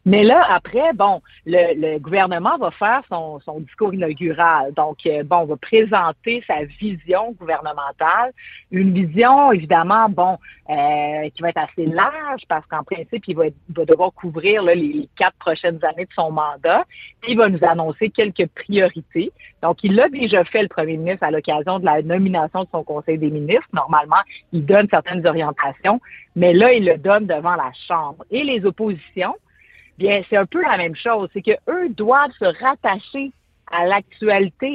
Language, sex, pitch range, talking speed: French, female, 160-215 Hz, 175 wpm